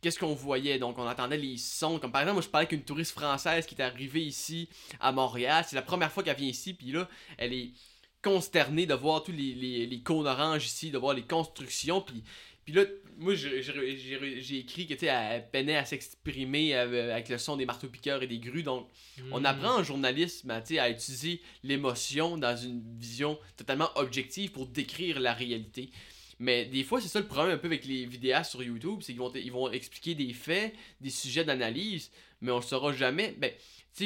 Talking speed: 210 wpm